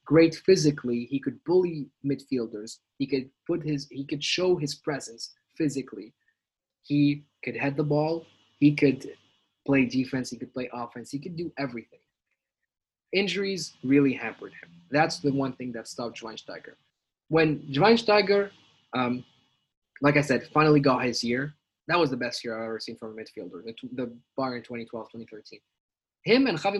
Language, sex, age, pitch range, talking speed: English, male, 20-39, 125-165 Hz, 160 wpm